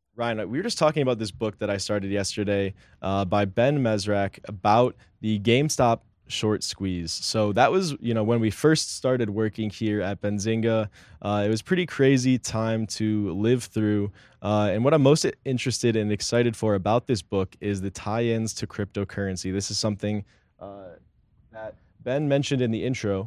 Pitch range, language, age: 105-125 Hz, English, 20-39